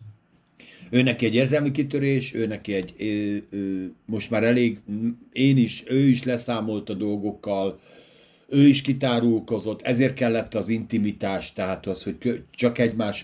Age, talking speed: 50-69, 125 wpm